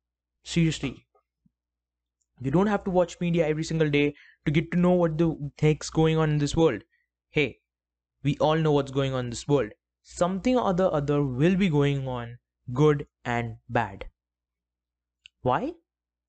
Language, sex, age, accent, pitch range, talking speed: English, male, 20-39, Indian, 120-170 Hz, 160 wpm